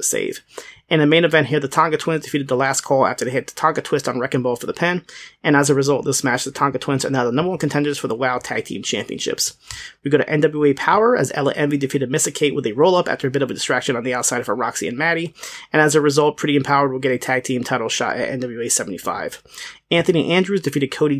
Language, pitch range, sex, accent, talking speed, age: English, 135-165 Hz, male, American, 265 wpm, 30-49